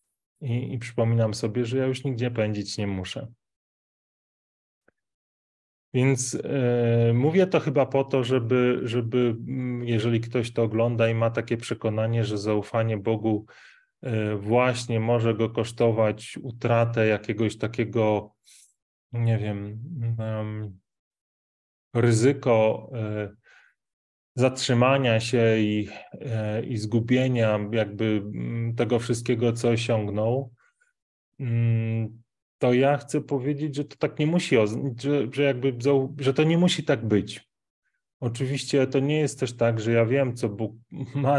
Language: Polish